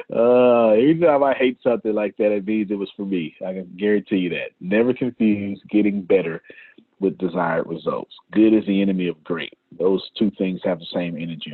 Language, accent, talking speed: English, American, 205 wpm